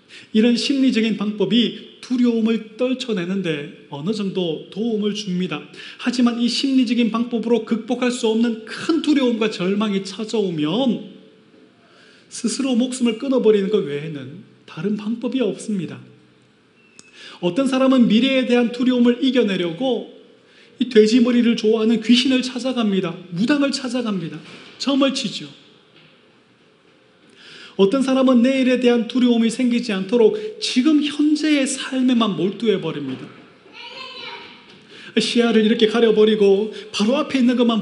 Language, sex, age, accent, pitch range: Korean, male, 30-49, native, 195-250 Hz